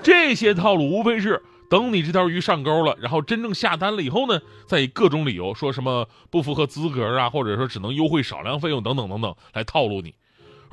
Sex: male